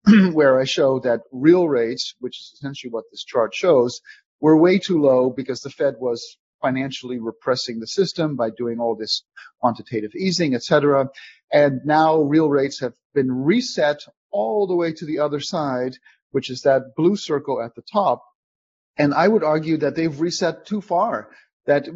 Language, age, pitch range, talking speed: English, 40-59, 135-170 Hz, 180 wpm